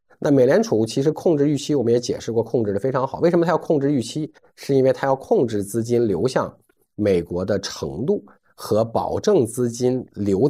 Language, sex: Chinese, male